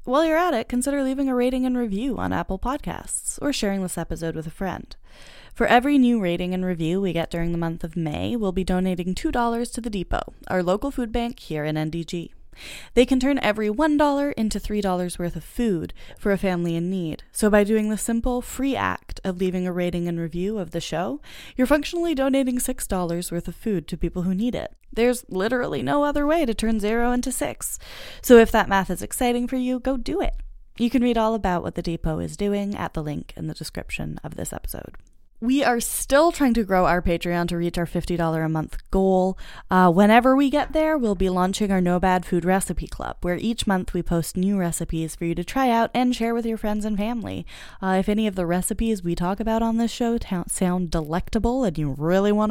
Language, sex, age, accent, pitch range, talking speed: English, female, 20-39, American, 180-245 Hz, 225 wpm